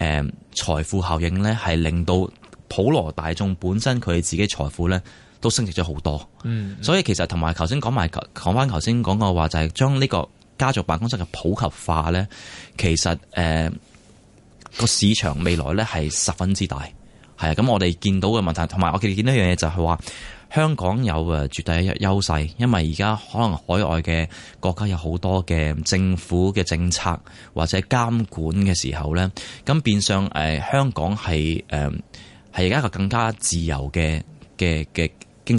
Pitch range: 80-105 Hz